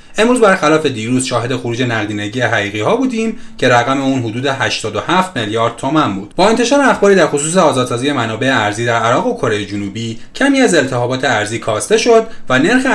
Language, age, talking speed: Persian, 30-49, 175 wpm